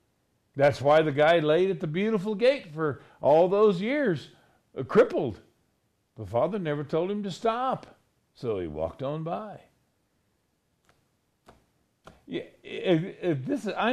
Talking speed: 120 wpm